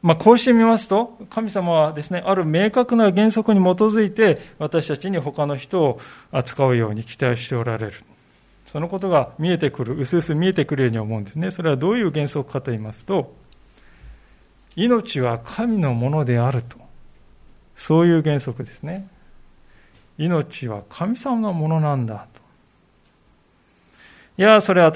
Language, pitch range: Japanese, 135-205 Hz